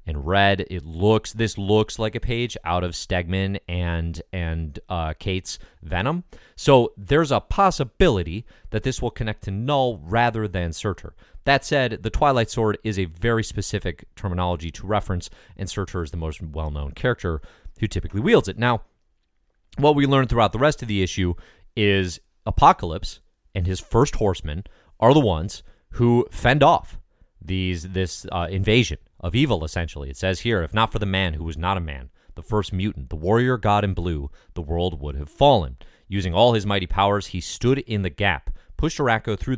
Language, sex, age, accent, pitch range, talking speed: English, male, 30-49, American, 85-115 Hz, 185 wpm